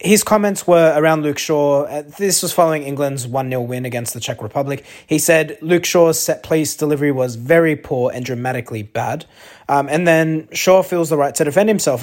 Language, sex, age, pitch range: English, male, 20-39, 125-165 Hz